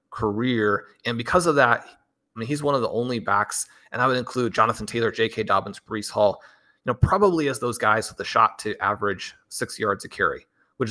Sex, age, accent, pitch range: male, 30-49, American, 105-125 Hz